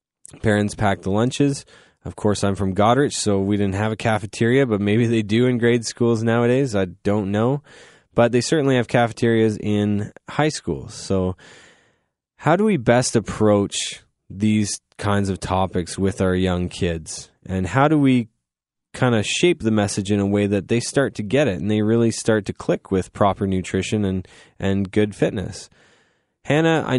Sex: male